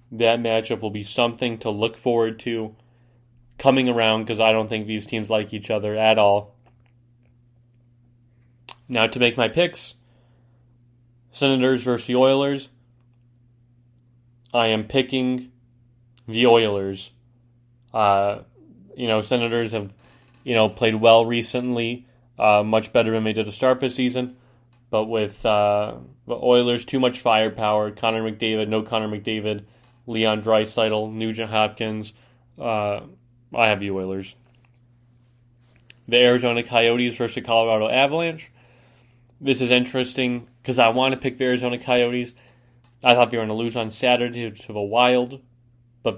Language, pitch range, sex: English, 110-125 Hz, male